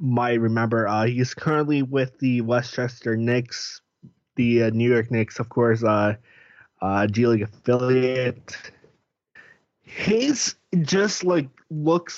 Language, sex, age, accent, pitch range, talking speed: English, male, 20-39, American, 120-140 Hz, 125 wpm